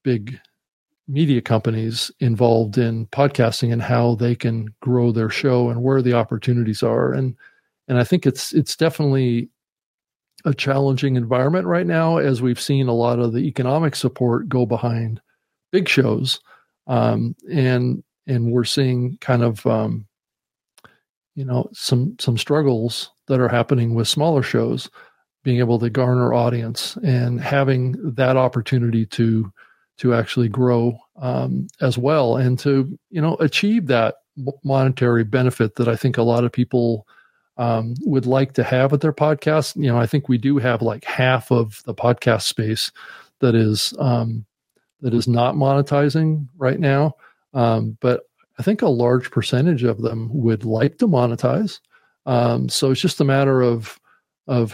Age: 50-69